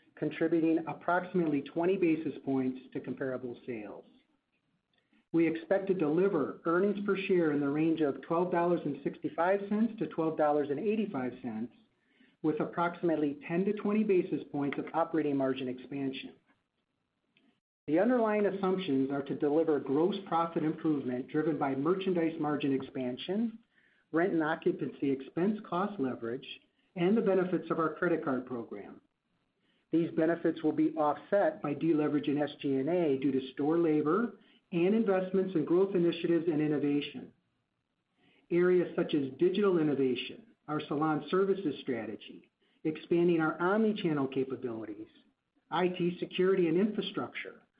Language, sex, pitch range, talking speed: English, male, 145-185 Hz, 125 wpm